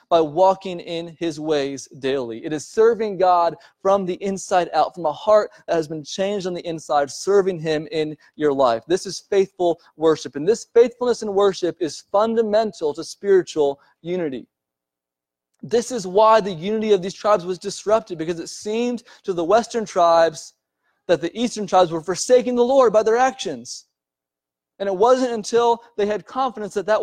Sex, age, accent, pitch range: male, 30-49, American, 150-210 Hz